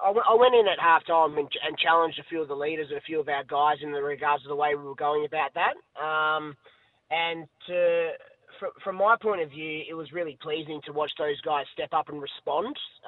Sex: male